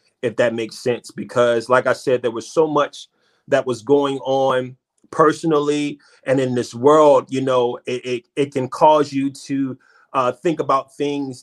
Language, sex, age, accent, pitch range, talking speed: English, male, 30-49, American, 125-155 Hz, 180 wpm